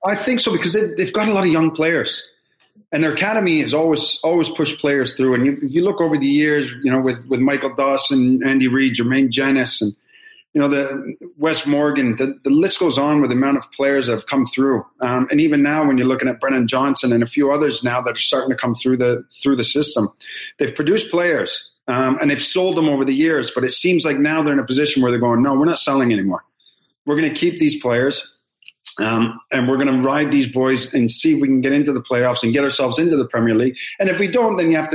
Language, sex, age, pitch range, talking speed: English, male, 30-49, 125-150 Hz, 250 wpm